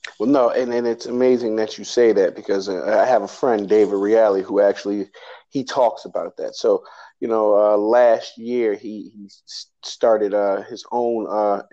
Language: English